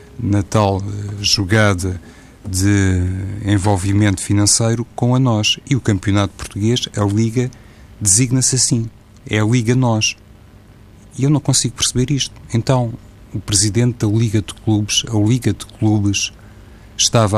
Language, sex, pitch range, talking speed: Portuguese, male, 95-110 Hz, 135 wpm